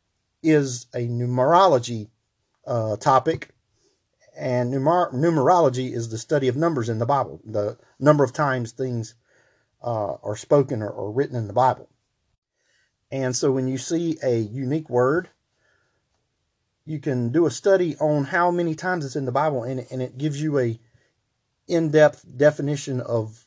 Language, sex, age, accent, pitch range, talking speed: English, male, 40-59, American, 115-145 Hz, 155 wpm